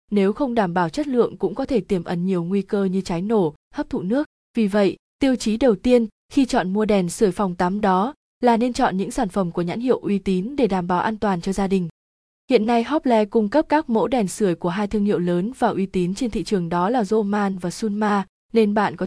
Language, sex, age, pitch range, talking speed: Vietnamese, female, 20-39, 185-230 Hz, 255 wpm